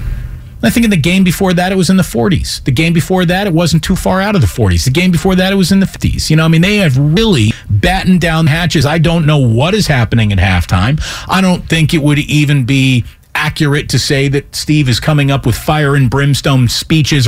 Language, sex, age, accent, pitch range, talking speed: English, male, 40-59, American, 110-165 Hz, 245 wpm